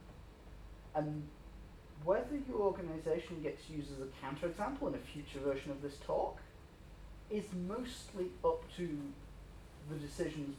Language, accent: English, British